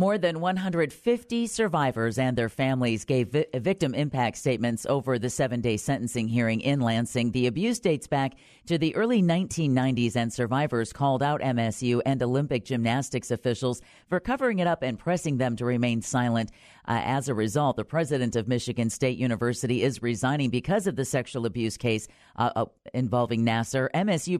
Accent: American